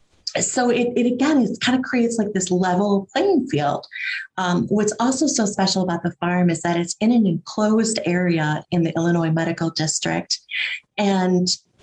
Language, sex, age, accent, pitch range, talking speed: English, female, 30-49, American, 170-205 Hz, 170 wpm